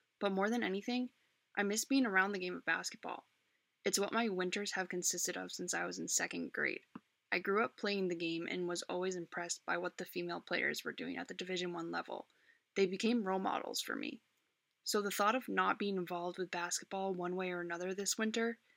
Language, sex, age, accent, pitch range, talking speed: English, female, 20-39, American, 180-205 Hz, 215 wpm